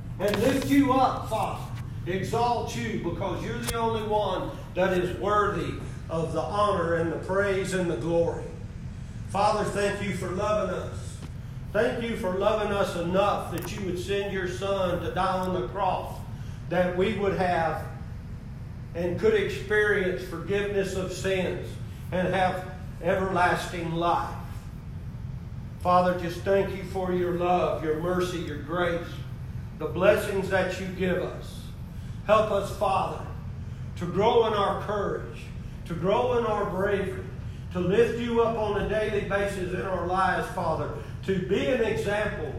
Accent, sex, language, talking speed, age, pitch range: American, male, English, 150 wpm, 40-59, 140-200 Hz